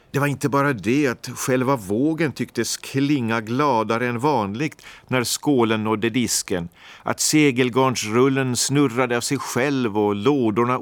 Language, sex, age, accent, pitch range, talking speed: Swedish, male, 50-69, native, 110-140 Hz, 140 wpm